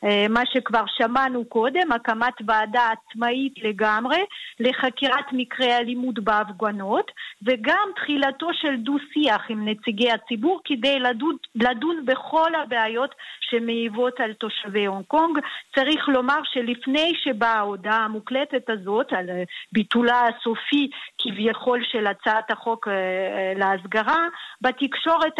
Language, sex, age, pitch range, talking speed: Hebrew, female, 40-59, 225-280 Hz, 100 wpm